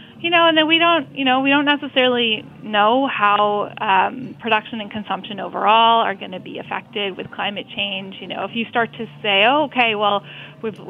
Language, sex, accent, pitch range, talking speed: English, female, American, 200-235 Hz, 205 wpm